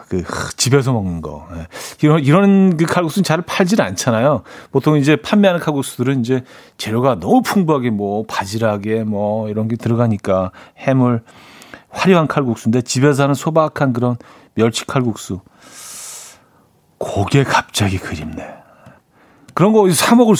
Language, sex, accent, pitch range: Korean, male, native, 110-160 Hz